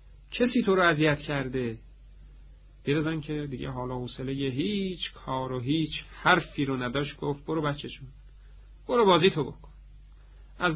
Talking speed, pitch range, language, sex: 140 wpm, 110-155 Hz, Persian, male